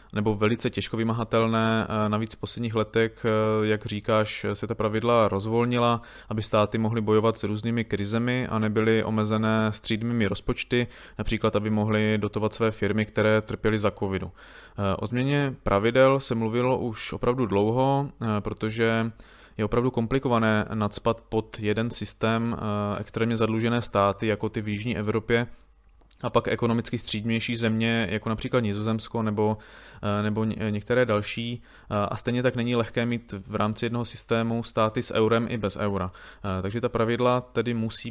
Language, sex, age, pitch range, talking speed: Czech, male, 20-39, 105-120 Hz, 145 wpm